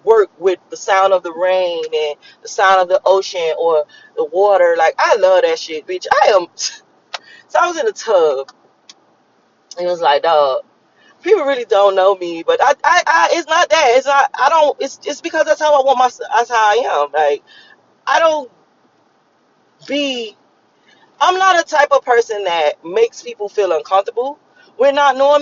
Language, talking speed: English, 190 wpm